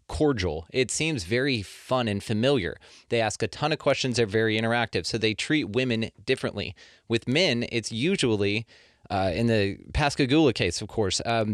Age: 30-49